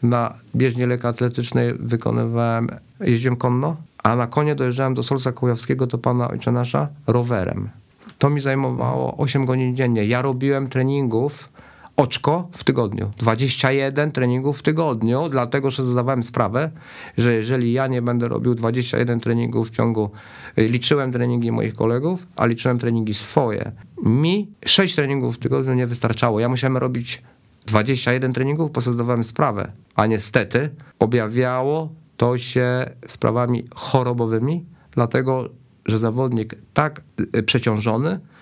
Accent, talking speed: native, 130 wpm